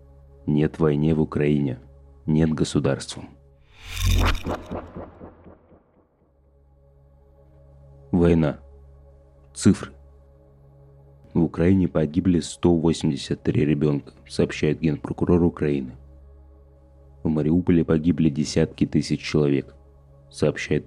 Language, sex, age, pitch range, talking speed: Russian, male, 30-49, 70-85 Hz, 65 wpm